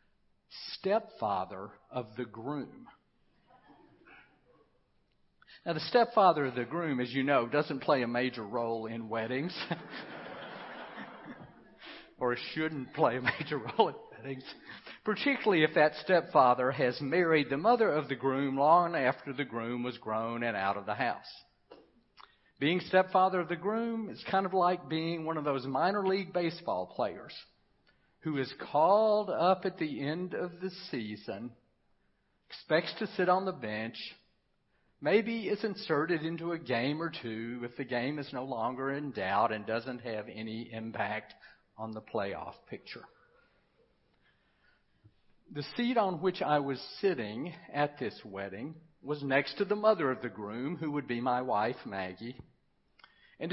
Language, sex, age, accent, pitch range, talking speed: English, male, 50-69, American, 120-180 Hz, 150 wpm